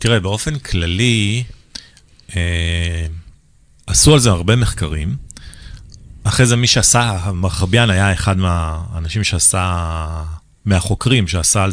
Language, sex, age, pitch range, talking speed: Hebrew, male, 40-59, 90-125 Hz, 105 wpm